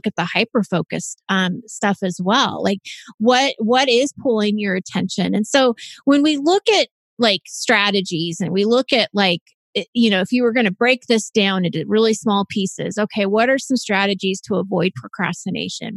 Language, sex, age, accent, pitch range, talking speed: English, female, 30-49, American, 195-235 Hz, 190 wpm